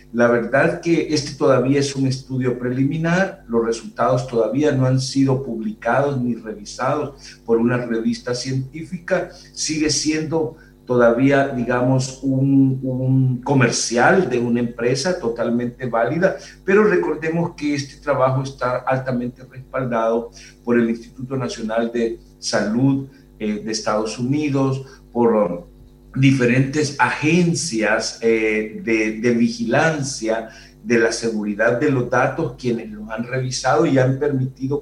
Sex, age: male, 50-69